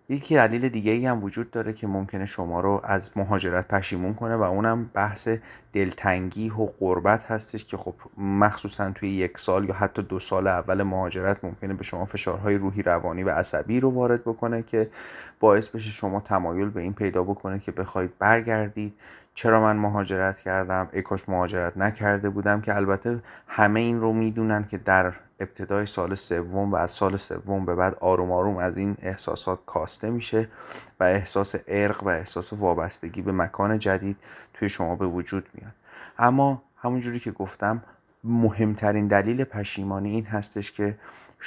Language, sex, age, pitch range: Persian, male, 30-49, 95-110 Hz